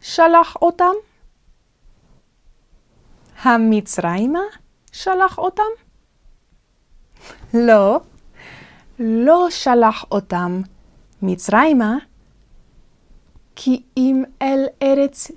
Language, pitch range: Hebrew, 205-285 Hz